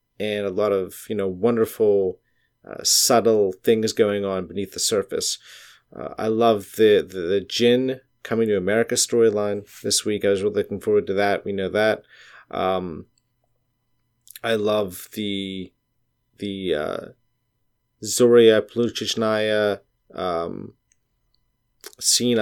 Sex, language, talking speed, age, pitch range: male, English, 125 wpm, 30-49, 100-125 Hz